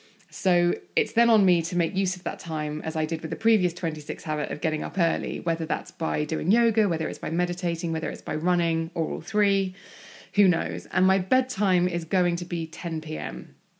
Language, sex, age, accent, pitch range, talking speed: English, female, 20-39, British, 160-200 Hz, 215 wpm